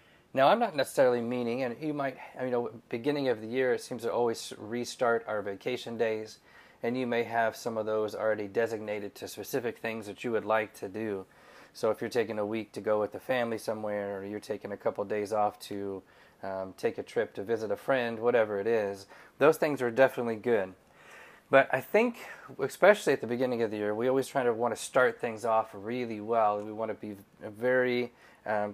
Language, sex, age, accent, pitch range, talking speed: English, male, 30-49, American, 105-125 Hz, 215 wpm